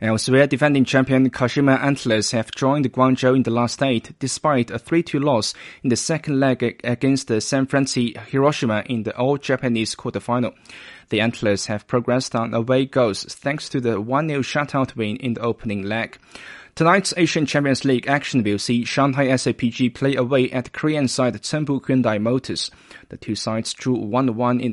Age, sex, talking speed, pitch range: 20-39, male, 165 wpm, 115-140 Hz